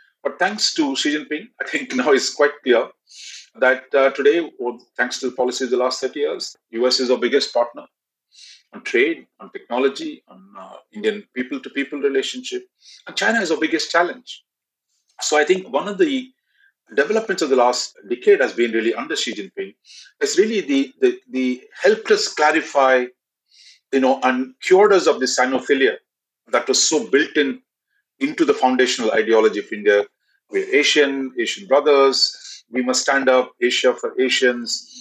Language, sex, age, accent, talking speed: English, male, 40-59, Indian, 170 wpm